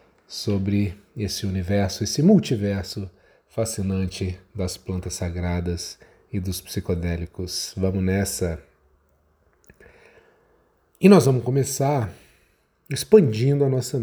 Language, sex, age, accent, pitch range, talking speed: Portuguese, male, 40-59, Brazilian, 95-140 Hz, 90 wpm